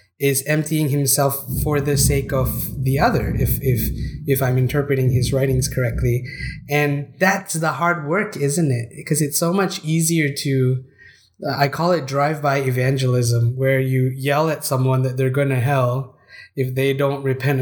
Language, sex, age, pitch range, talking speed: English, male, 20-39, 130-150 Hz, 170 wpm